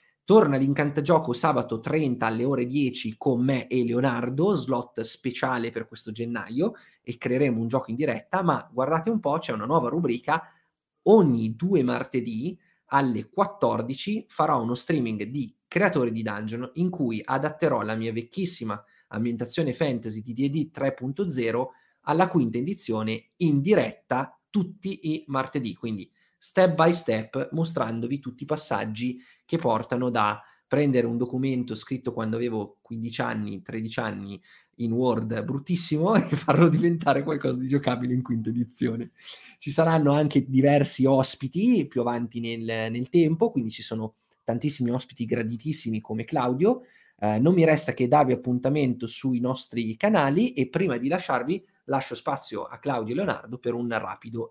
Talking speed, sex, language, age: 150 wpm, male, Italian, 30-49